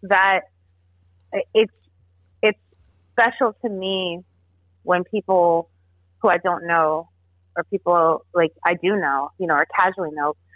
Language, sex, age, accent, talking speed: English, female, 30-49, American, 130 wpm